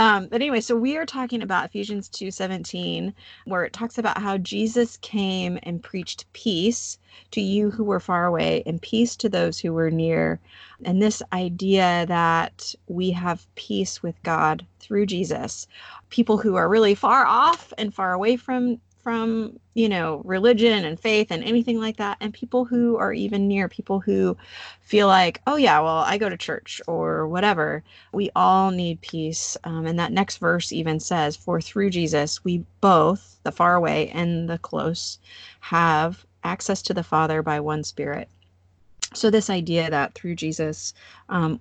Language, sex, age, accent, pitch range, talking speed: English, female, 30-49, American, 155-205 Hz, 175 wpm